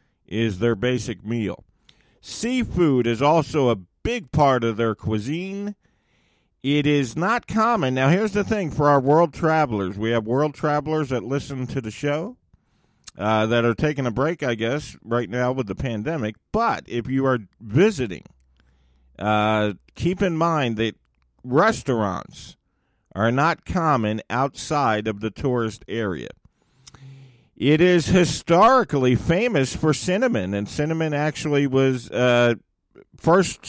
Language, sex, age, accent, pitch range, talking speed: English, male, 50-69, American, 115-165 Hz, 140 wpm